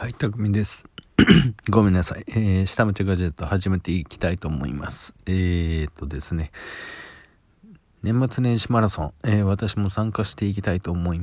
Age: 40-59